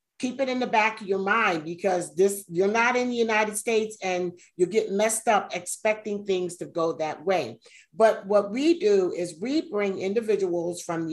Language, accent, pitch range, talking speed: English, American, 170-200 Hz, 200 wpm